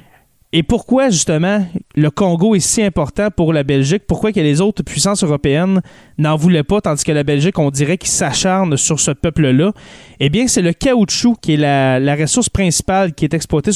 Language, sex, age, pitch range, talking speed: French, male, 20-39, 150-195 Hz, 195 wpm